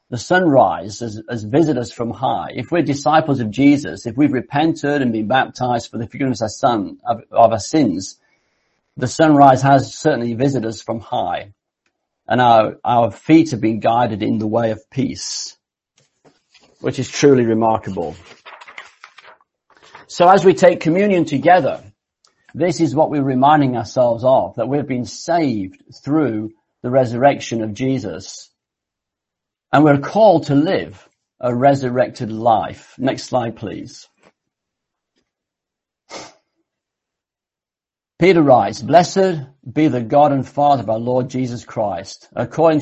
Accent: British